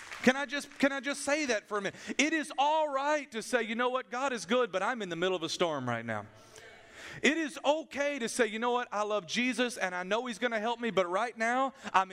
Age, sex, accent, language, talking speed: 40-59, male, American, English, 275 wpm